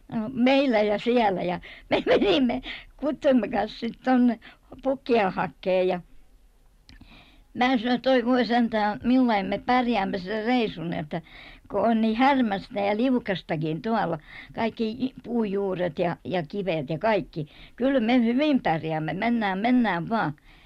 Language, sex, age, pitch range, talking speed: Finnish, male, 60-79, 220-270 Hz, 120 wpm